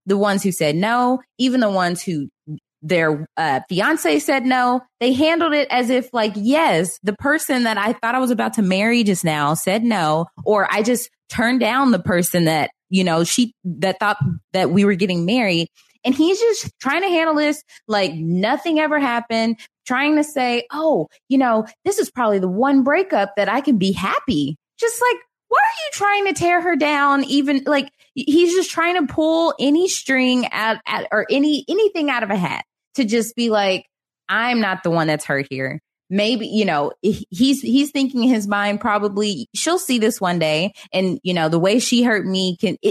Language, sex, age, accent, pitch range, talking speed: English, female, 20-39, American, 195-280 Hz, 200 wpm